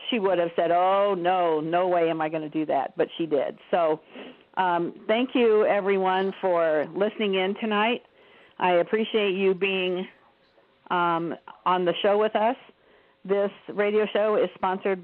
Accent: American